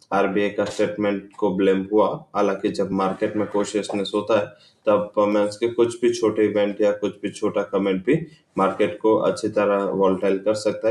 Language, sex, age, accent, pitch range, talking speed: English, male, 20-39, Indian, 95-105 Hz, 180 wpm